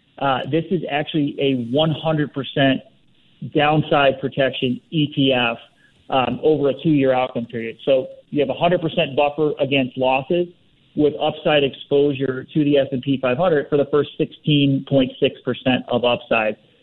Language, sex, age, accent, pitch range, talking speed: English, male, 40-59, American, 130-150 Hz, 125 wpm